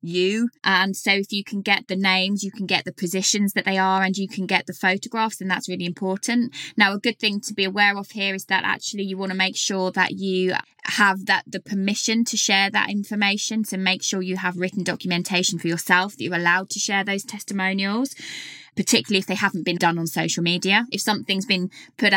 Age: 20-39